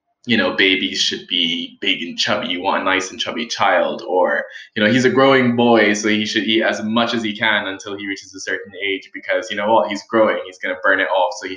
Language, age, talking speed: English, 20-39, 265 wpm